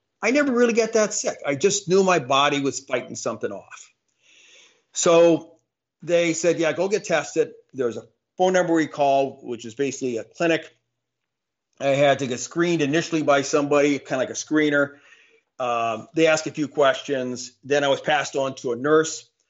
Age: 40-59